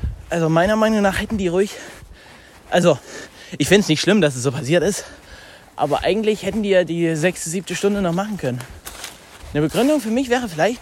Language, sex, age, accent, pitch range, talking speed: German, male, 20-39, German, 140-190 Hz, 200 wpm